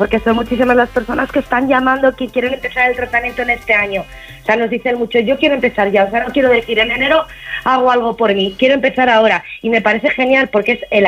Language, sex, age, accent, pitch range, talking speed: Spanish, female, 20-39, Spanish, 205-250 Hz, 250 wpm